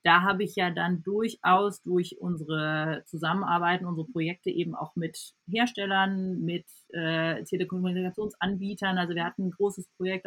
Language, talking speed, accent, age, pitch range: German, 140 wpm, German, 30-49, 165-190 Hz